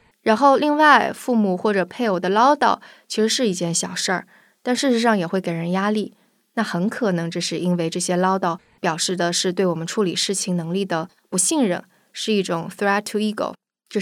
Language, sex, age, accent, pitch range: Chinese, female, 20-39, native, 175-220 Hz